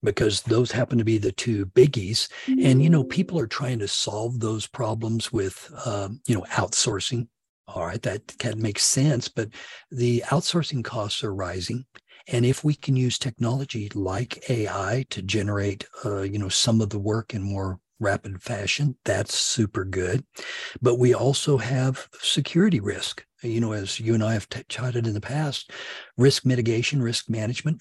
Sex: male